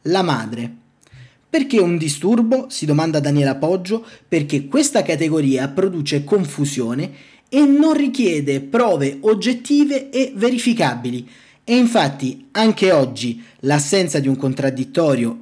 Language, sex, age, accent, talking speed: Italian, male, 30-49, native, 115 wpm